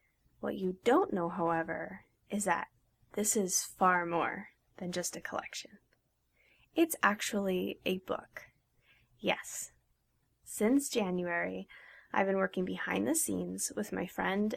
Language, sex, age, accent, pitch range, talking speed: English, female, 10-29, American, 180-240 Hz, 130 wpm